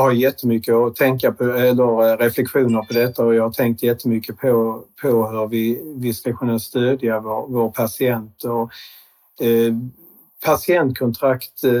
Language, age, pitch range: Swedish, 50-69, 115-135 Hz